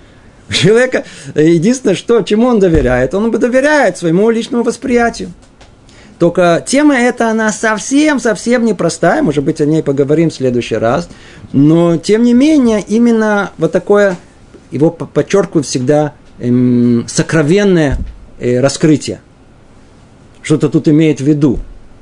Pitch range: 130-200 Hz